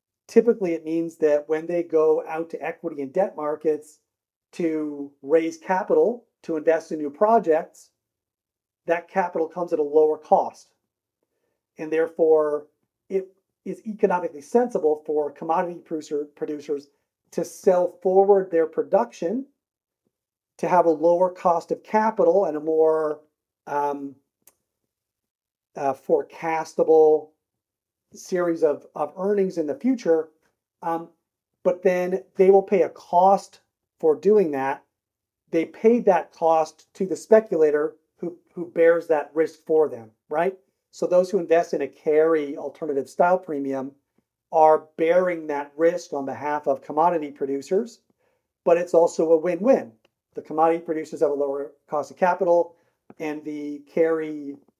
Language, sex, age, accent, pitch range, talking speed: English, male, 40-59, American, 150-180 Hz, 135 wpm